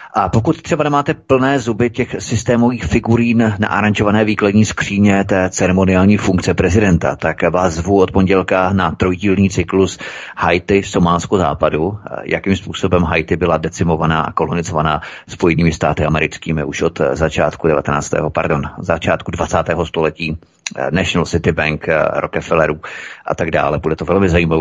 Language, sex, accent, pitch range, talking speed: Czech, male, native, 85-95 Hz, 140 wpm